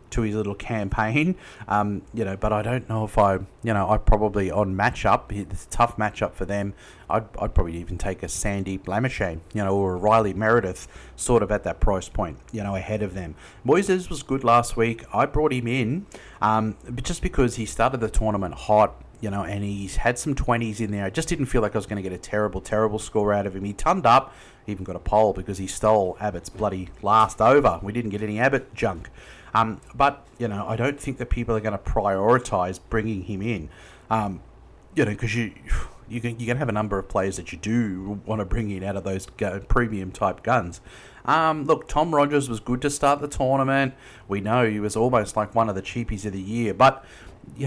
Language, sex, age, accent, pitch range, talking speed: English, male, 30-49, Australian, 100-120 Hz, 230 wpm